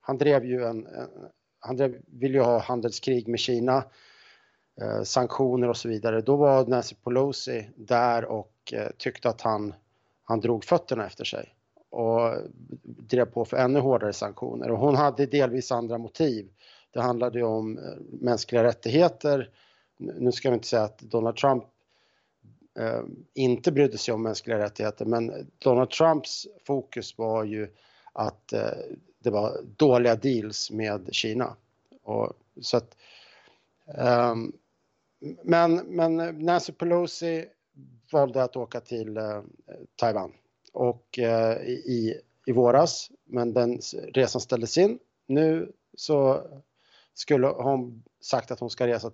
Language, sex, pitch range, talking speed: Swedish, male, 115-135 Hz, 135 wpm